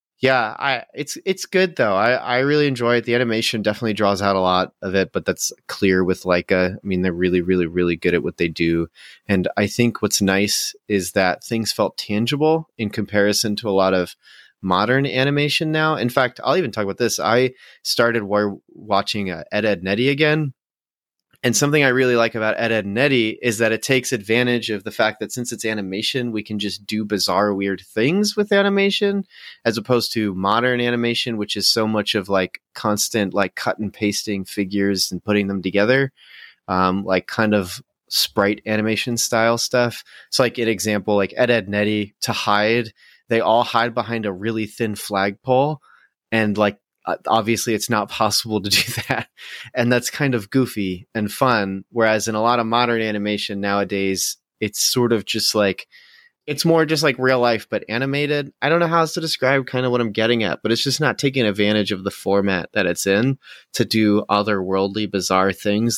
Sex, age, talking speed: male, 30-49, 195 wpm